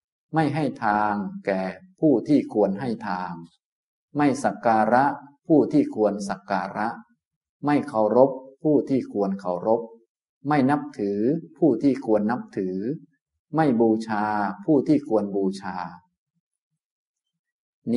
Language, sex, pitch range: Thai, male, 100-145 Hz